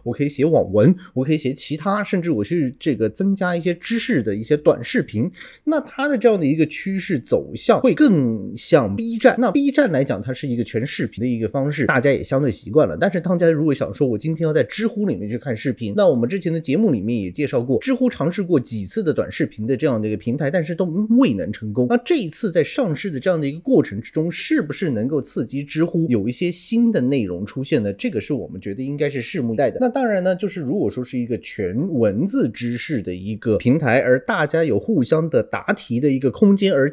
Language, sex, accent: Chinese, male, native